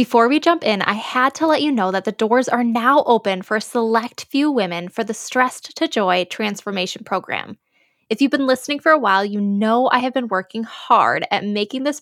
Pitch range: 200-255 Hz